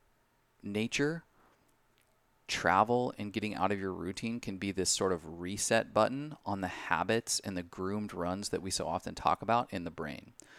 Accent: American